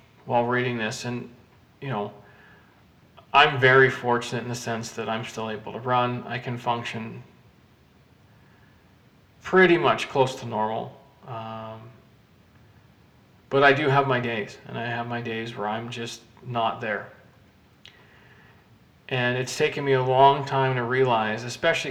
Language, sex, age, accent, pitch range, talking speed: English, male, 40-59, American, 115-130 Hz, 145 wpm